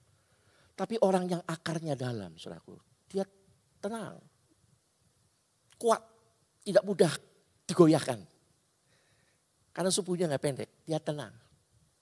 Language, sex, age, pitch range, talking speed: Indonesian, male, 50-69, 120-170 Hz, 90 wpm